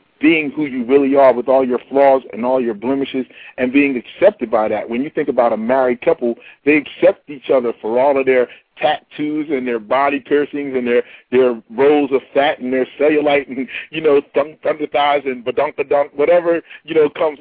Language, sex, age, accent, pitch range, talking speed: English, male, 40-59, American, 125-145 Hz, 200 wpm